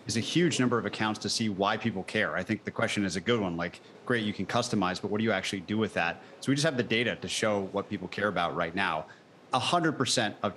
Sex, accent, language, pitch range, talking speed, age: male, American, English, 100-120 Hz, 275 wpm, 30-49